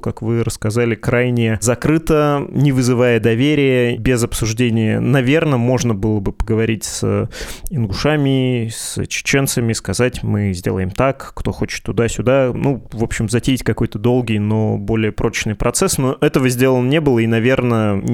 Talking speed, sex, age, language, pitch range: 140 wpm, male, 20-39, Russian, 110-130 Hz